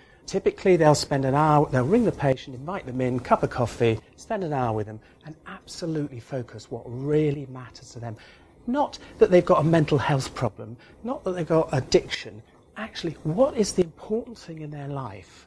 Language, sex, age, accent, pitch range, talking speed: English, male, 40-59, British, 120-165 Hz, 195 wpm